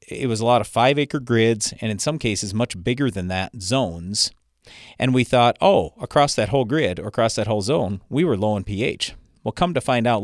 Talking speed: 230 wpm